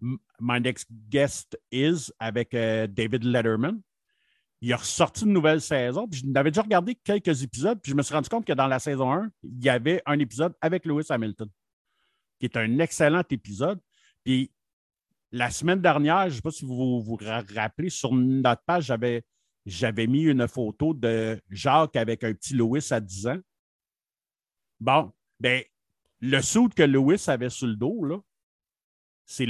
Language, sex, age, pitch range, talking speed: French, male, 50-69, 115-150 Hz, 170 wpm